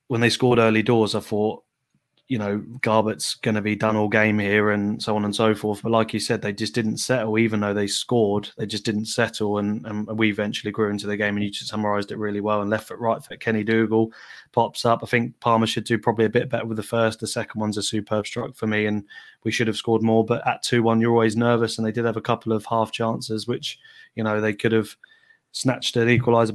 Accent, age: British, 20-39